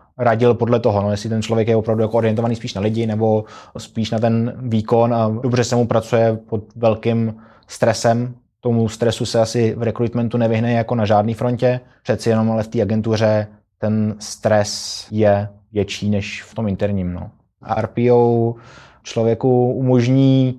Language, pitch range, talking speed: Czech, 110-120 Hz, 165 wpm